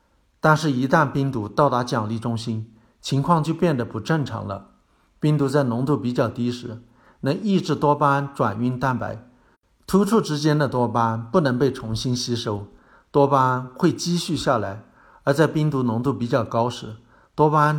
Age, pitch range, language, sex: 50-69, 115-145 Hz, Chinese, male